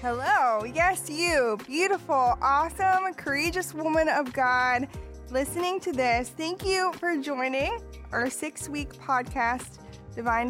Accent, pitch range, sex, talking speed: American, 250-320 Hz, female, 120 wpm